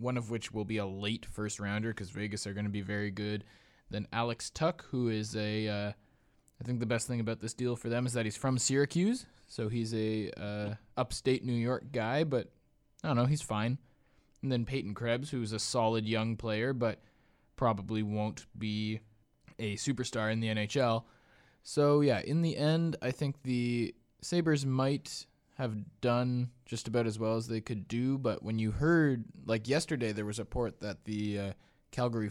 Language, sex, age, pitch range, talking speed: English, male, 20-39, 105-125 Hz, 190 wpm